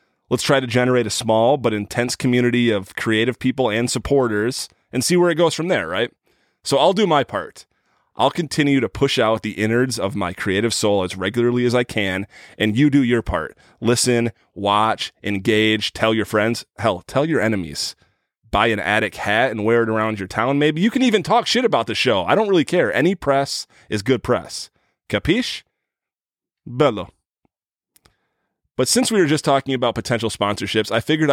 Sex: male